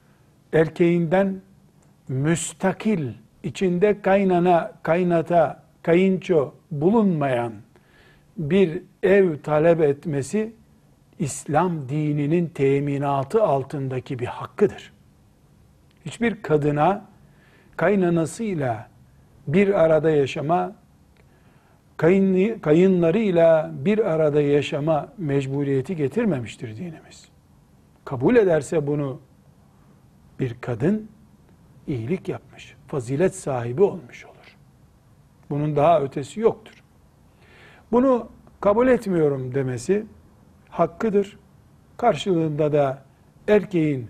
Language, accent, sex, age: Turkish, native, male, 60-79